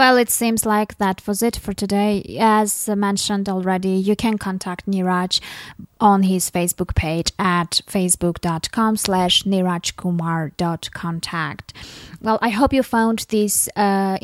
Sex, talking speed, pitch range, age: female, 130 wpm, 180-215 Hz, 20-39